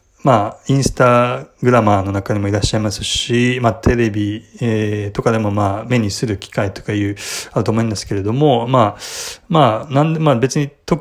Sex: male